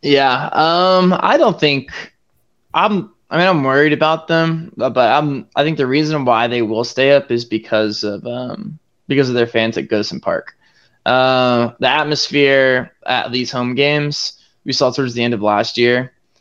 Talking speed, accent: 185 wpm, American